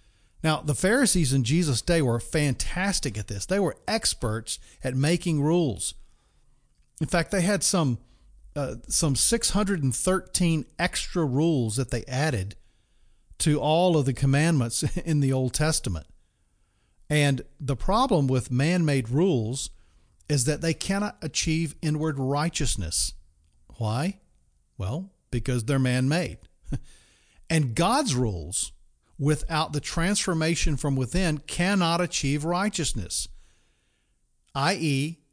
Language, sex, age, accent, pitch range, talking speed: English, male, 40-59, American, 115-170 Hz, 115 wpm